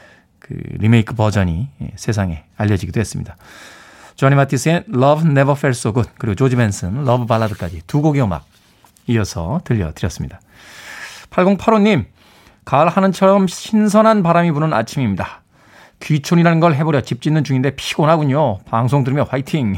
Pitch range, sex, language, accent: 115-165 Hz, male, Korean, native